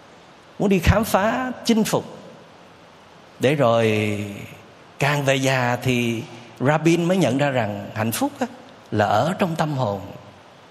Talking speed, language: 140 wpm, Vietnamese